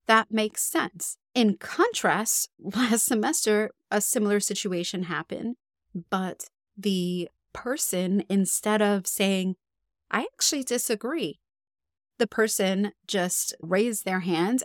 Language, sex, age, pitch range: English, female, 30-49, 185-230 Hz